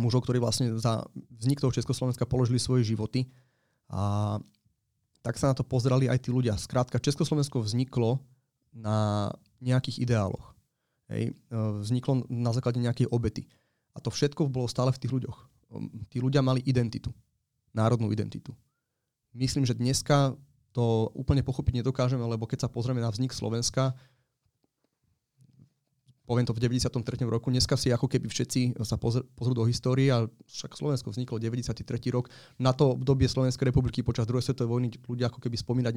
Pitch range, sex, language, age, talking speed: 115-130 Hz, male, Slovak, 30-49, 155 wpm